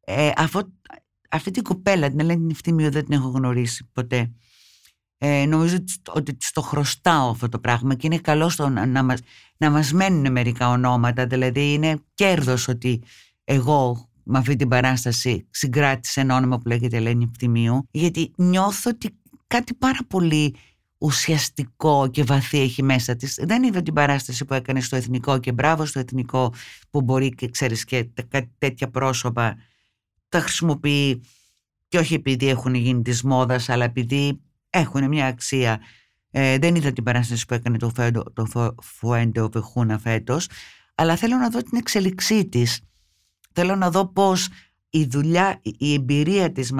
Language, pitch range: Greek, 120-150 Hz